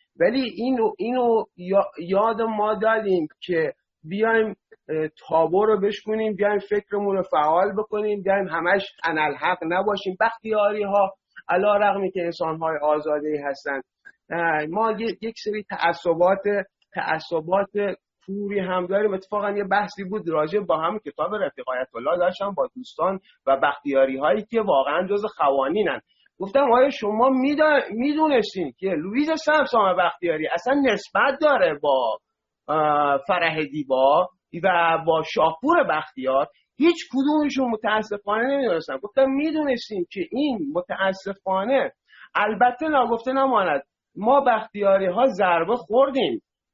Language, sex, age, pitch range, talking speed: Persian, male, 30-49, 165-230 Hz, 115 wpm